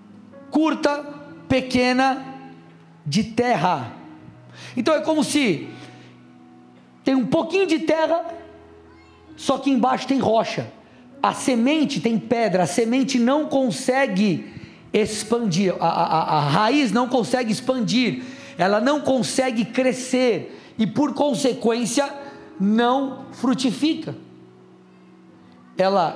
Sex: male